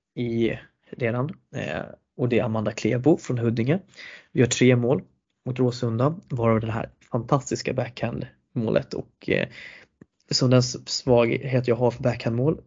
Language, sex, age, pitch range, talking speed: Swedish, male, 20-39, 115-135 Hz, 130 wpm